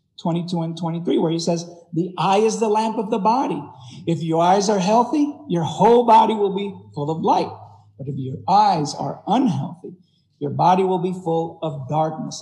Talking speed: 195 wpm